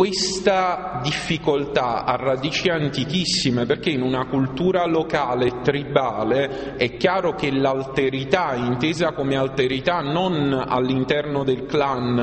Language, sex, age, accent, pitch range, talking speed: Italian, male, 30-49, native, 130-165 Hz, 115 wpm